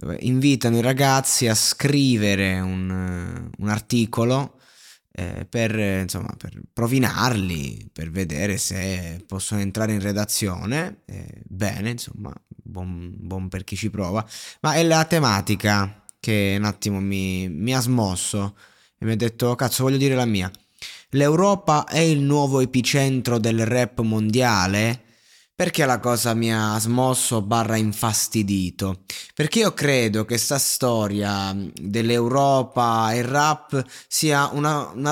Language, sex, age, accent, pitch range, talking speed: Italian, male, 20-39, native, 105-135 Hz, 130 wpm